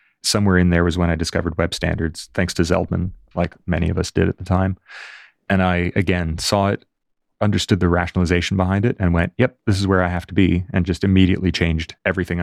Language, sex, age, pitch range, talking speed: English, male, 30-49, 85-100 Hz, 215 wpm